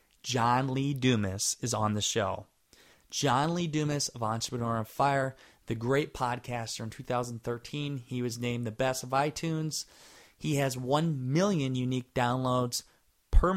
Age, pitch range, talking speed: 20-39, 110-130 Hz, 145 wpm